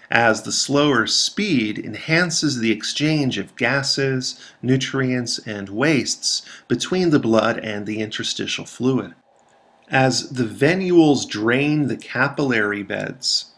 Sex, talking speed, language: male, 115 wpm, English